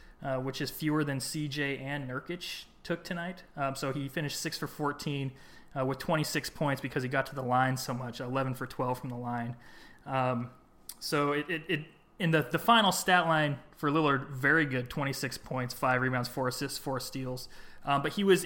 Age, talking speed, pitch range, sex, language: 20-39, 210 wpm, 130-155 Hz, male, English